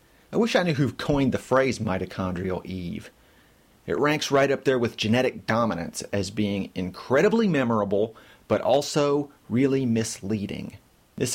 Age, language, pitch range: 30-49, English, 100-135 Hz